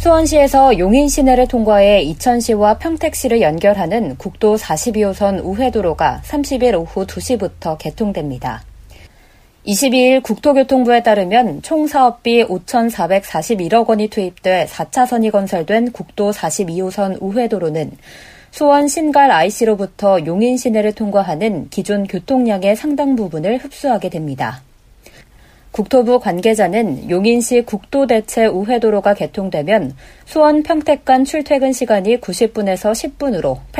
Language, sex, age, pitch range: Korean, female, 40-59, 190-255 Hz